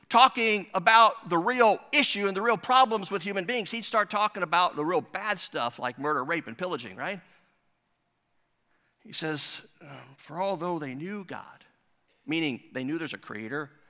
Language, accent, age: English, American, 50-69